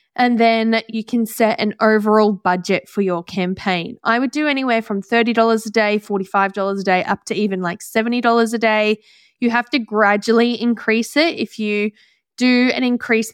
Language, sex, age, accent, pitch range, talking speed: English, female, 10-29, Australian, 195-245 Hz, 180 wpm